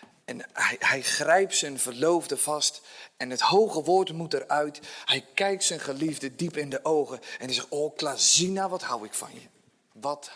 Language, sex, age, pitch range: Dutch, male, 40-59, 150-235 Hz